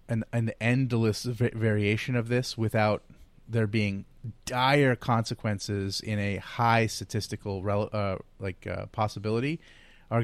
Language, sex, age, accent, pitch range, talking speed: English, male, 30-49, American, 100-115 Hz, 110 wpm